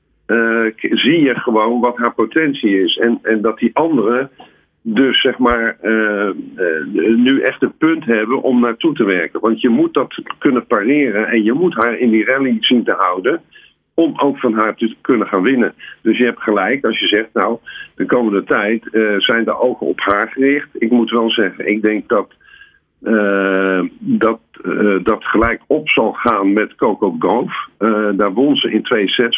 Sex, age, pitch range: male, 50-69, 110-130 Hz